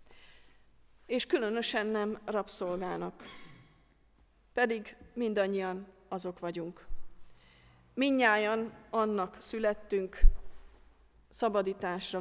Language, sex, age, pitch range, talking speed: Hungarian, female, 40-59, 185-220 Hz, 60 wpm